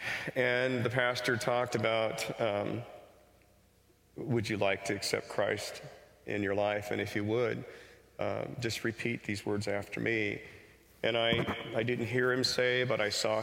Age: 40-59